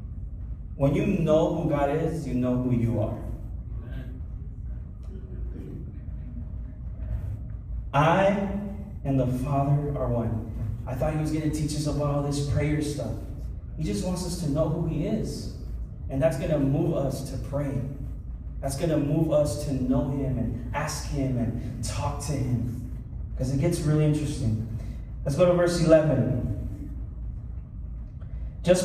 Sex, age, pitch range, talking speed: male, 30-49, 115-150 Hz, 150 wpm